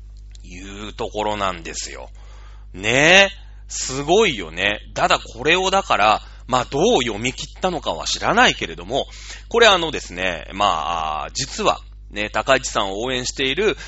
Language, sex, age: Japanese, male, 30-49